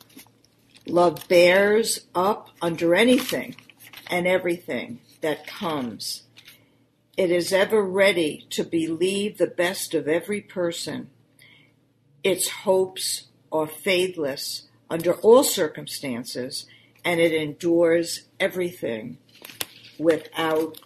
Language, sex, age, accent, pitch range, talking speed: English, female, 60-79, American, 145-185 Hz, 90 wpm